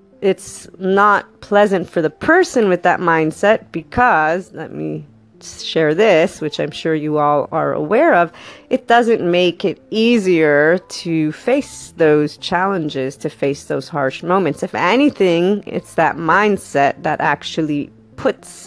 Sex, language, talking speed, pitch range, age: female, English, 140 wpm, 160-195 Hz, 30-49